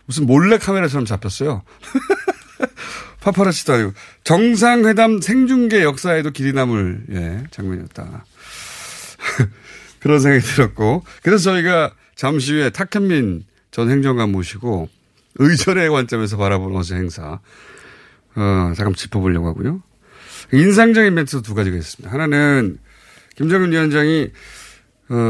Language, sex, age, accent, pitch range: Korean, male, 30-49, native, 105-160 Hz